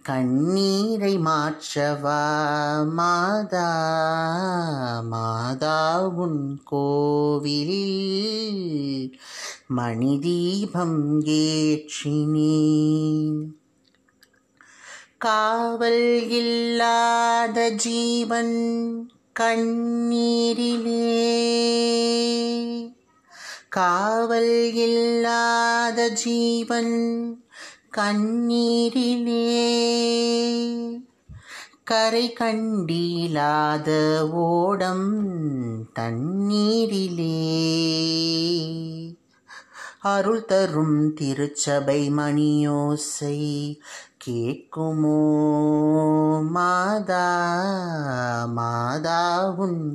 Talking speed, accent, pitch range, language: 30 wpm, Indian, 150-230 Hz, English